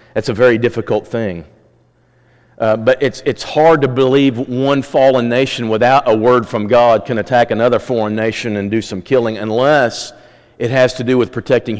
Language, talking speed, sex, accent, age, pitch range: English, 185 wpm, male, American, 40-59, 120-160 Hz